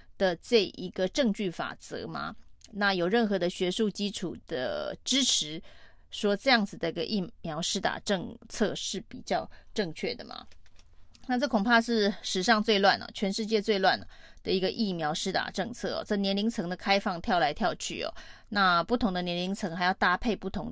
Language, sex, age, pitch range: Chinese, female, 30-49, 180-225 Hz